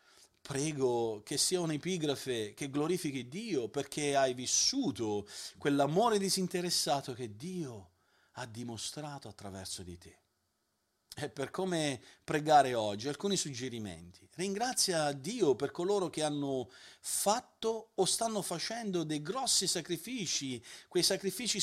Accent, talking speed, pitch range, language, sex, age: native, 115 wpm, 125-185 Hz, Italian, male, 40-59